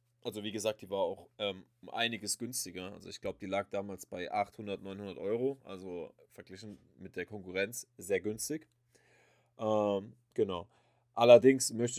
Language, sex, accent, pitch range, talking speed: German, male, German, 95-120 Hz, 155 wpm